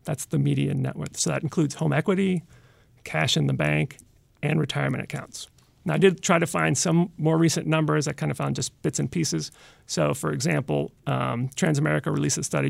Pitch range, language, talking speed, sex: 125-175 Hz, English, 205 wpm, male